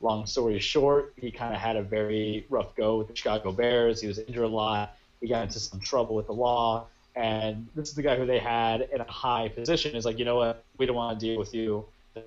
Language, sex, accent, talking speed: English, male, American, 260 wpm